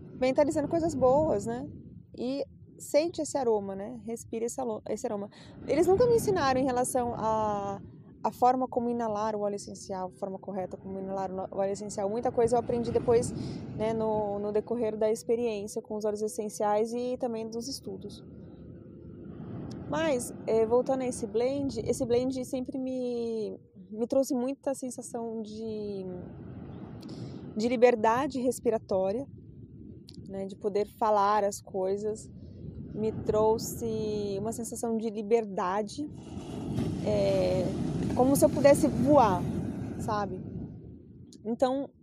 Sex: female